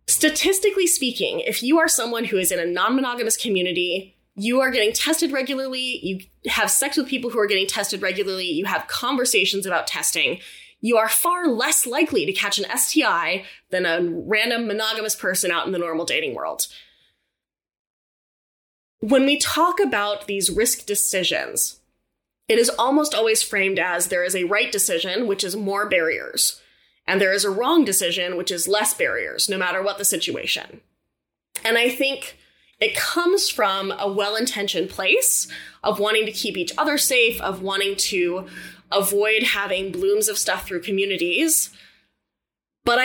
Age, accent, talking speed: 10-29, American, 160 wpm